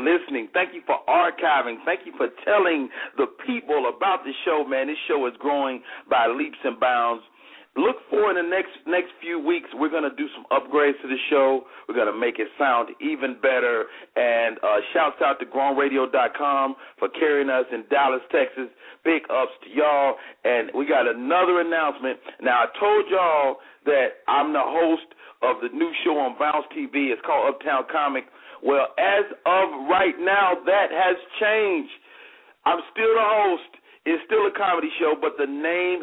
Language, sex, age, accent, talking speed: English, male, 40-59, American, 175 wpm